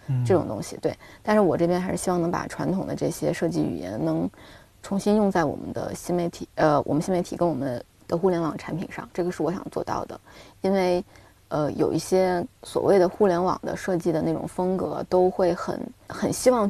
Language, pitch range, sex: Chinese, 170-190 Hz, female